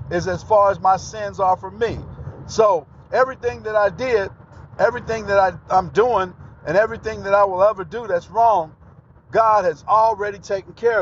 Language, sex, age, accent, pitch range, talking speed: English, male, 50-69, American, 155-200 Hz, 180 wpm